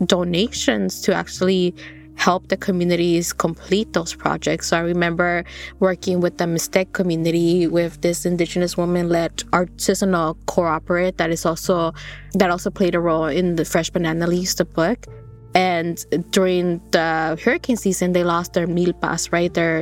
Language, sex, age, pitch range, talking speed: English, female, 20-39, 170-190 Hz, 145 wpm